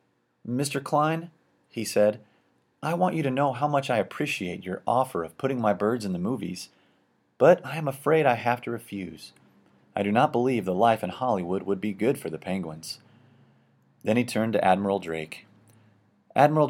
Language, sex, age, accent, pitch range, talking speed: English, male, 30-49, American, 95-135 Hz, 185 wpm